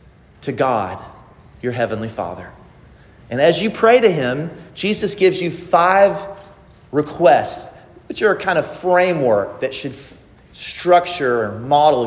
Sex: male